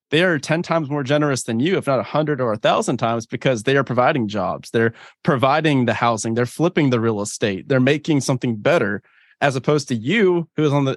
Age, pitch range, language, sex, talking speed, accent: 20-39, 120-150 Hz, English, male, 230 wpm, American